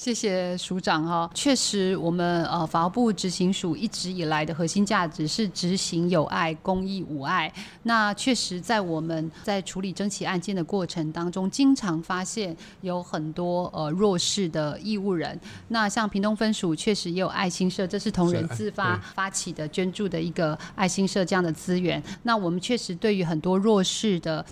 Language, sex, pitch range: Chinese, female, 175-215 Hz